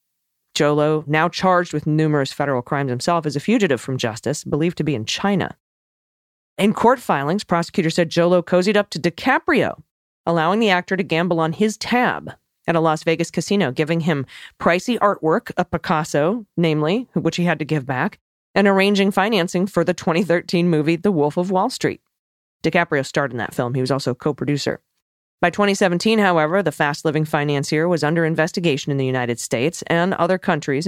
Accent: American